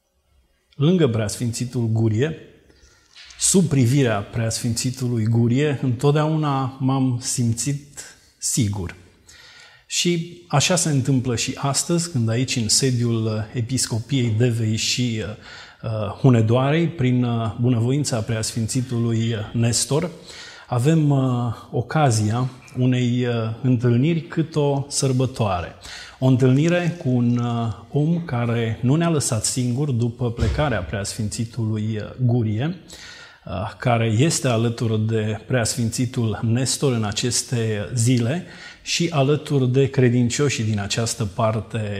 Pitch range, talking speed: 115-135 Hz, 95 wpm